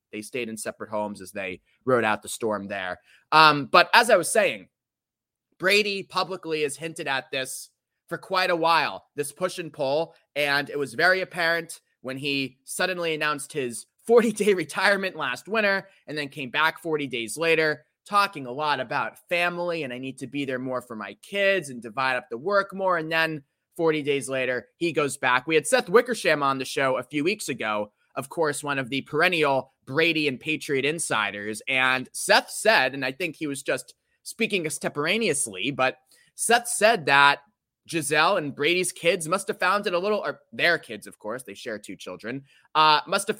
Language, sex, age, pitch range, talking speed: English, male, 20-39, 130-175 Hz, 190 wpm